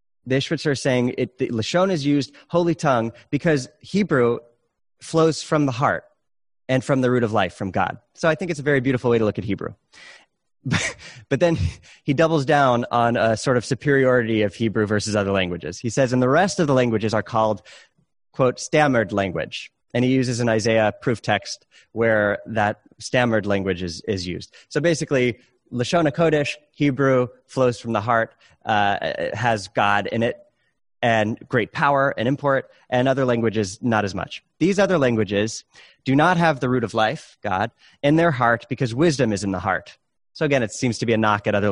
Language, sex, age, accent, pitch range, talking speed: English, male, 30-49, American, 110-145 Hz, 190 wpm